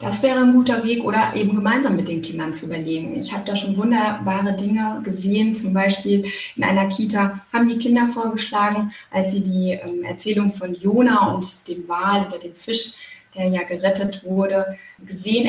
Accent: German